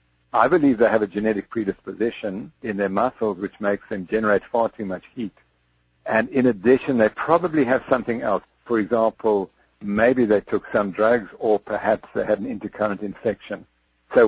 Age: 60-79